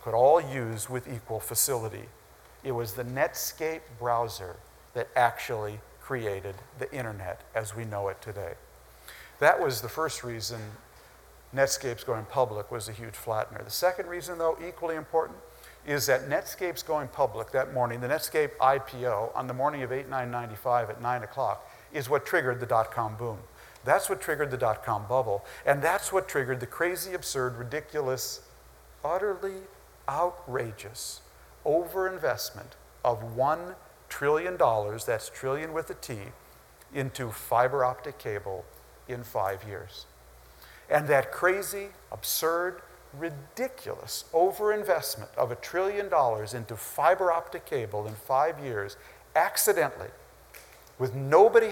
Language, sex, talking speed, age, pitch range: English, male, 135 wpm, 50-69, 110-160 Hz